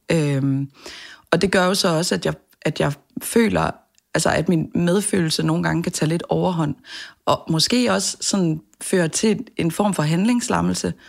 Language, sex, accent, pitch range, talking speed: Danish, female, native, 145-185 Hz, 175 wpm